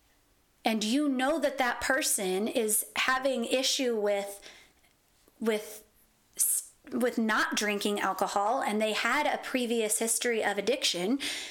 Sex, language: female, English